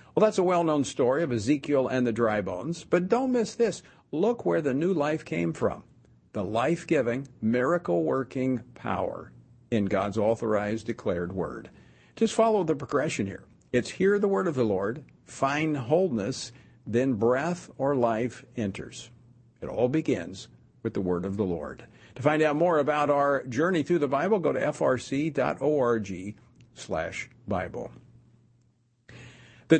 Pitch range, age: 115-150 Hz, 50-69